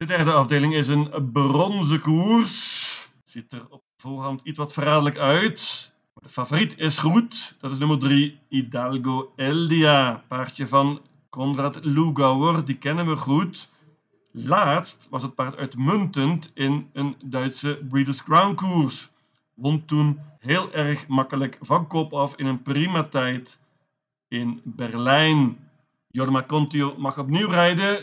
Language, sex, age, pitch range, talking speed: Dutch, male, 40-59, 135-160 Hz, 135 wpm